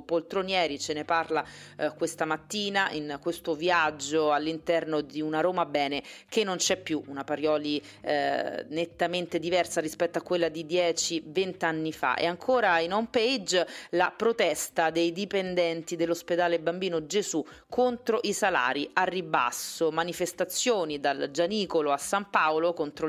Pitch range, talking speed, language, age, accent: 155-185 Hz, 145 wpm, Italian, 30-49, native